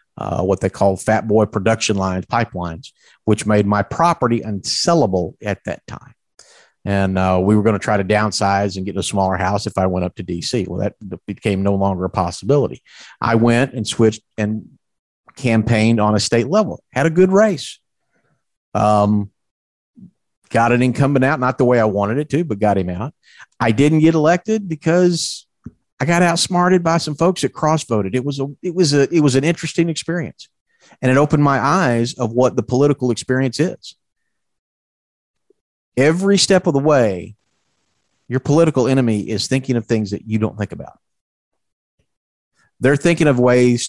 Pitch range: 105-145 Hz